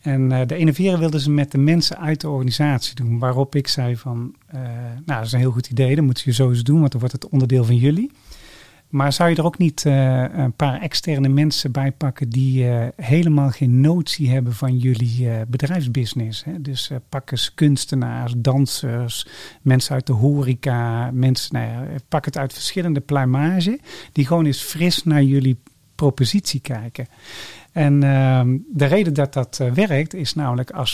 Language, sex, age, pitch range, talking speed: Dutch, male, 40-59, 130-150 Hz, 190 wpm